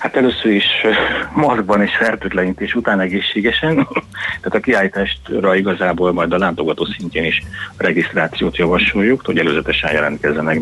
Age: 30-49